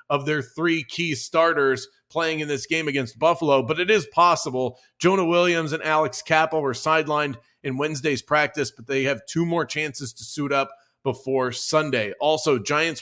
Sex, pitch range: male, 135-170 Hz